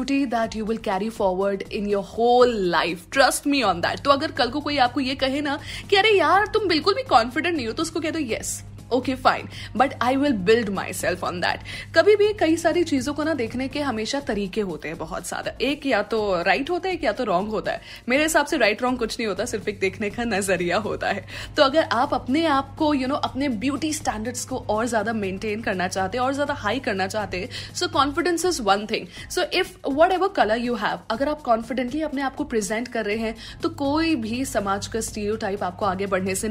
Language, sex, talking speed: Hindi, female, 230 wpm